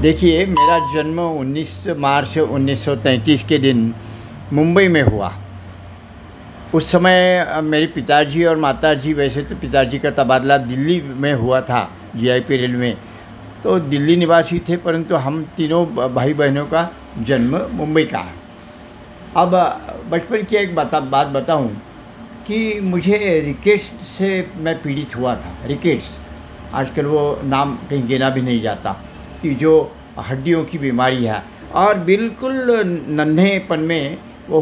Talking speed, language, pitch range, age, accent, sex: 135 wpm, Hindi, 130-170 Hz, 60-79, native, male